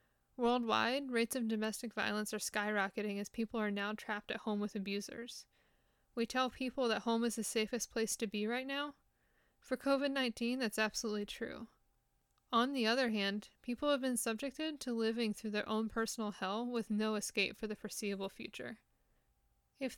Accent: American